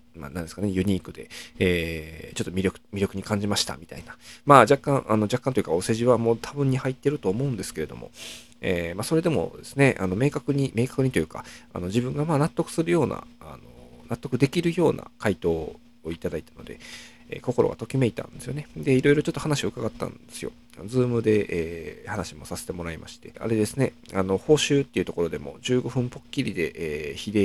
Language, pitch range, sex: Japanese, 95-130 Hz, male